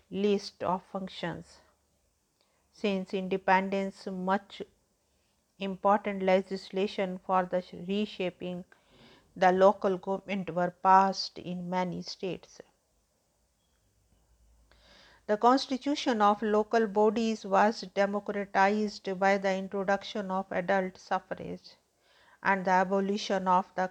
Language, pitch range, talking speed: English, 185-200 Hz, 95 wpm